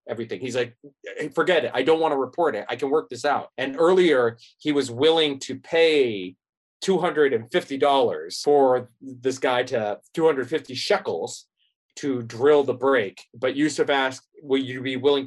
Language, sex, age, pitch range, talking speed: English, male, 30-49, 125-165 Hz, 165 wpm